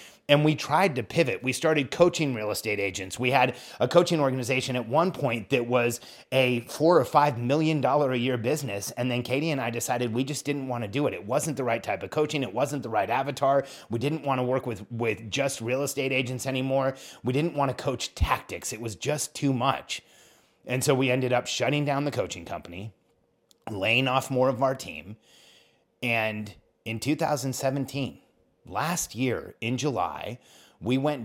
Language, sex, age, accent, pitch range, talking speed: English, male, 30-49, American, 115-140 Hz, 195 wpm